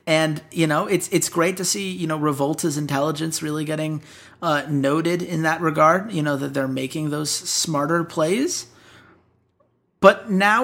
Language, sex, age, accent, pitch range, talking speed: English, male, 30-49, American, 130-160 Hz, 165 wpm